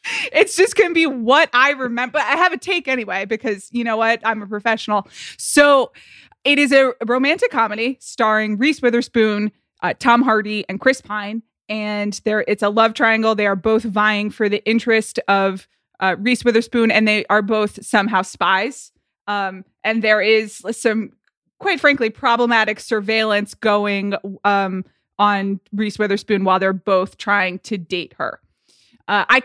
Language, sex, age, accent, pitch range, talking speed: English, female, 20-39, American, 205-250 Hz, 165 wpm